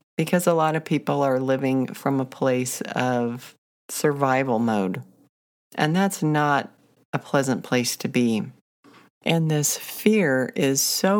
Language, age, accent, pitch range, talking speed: English, 50-69, American, 125-155 Hz, 140 wpm